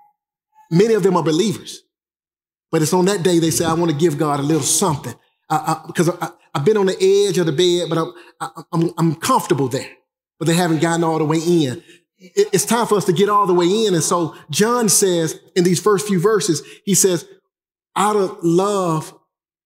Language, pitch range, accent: English, 165-205 Hz, American